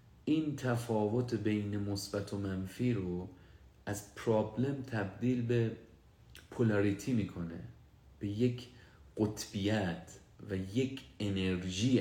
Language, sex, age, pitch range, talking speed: Persian, male, 40-59, 95-120 Hz, 95 wpm